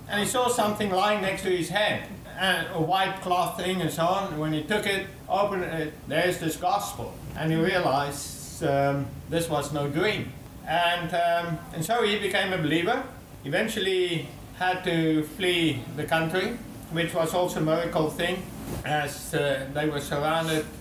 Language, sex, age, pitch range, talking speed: English, male, 60-79, 150-180 Hz, 170 wpm